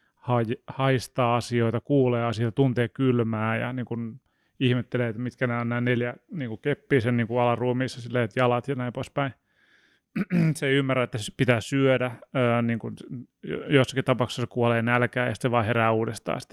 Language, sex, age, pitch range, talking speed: Finnish, male, 30-49, 120-135 Hz, 165 wpm